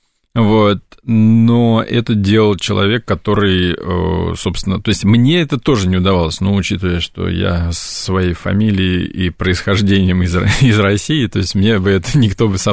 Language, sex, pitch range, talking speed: Russian, male, 95-115 Hz, 155 wpm